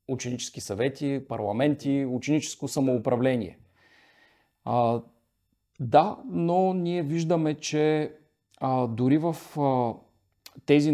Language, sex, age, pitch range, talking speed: Bulgarian, male, 40-59, 105-140 Hz, 90 wpm